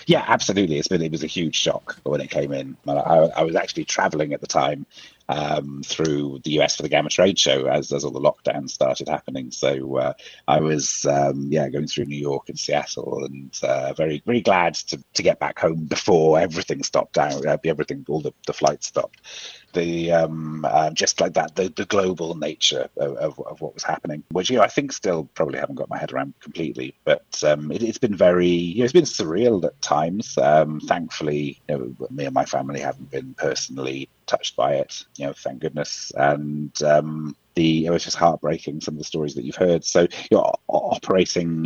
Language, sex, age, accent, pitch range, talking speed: English, male, 30-49, British, 70-85 Hz, 215 wpm